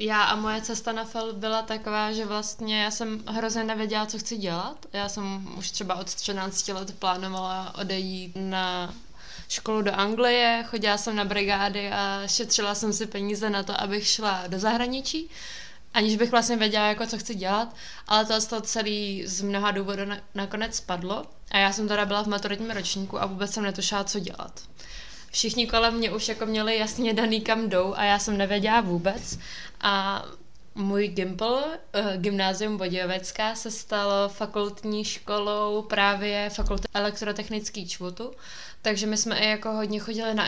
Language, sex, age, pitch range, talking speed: Czech, female, 20-39, 195-220 Hz, 170 wpm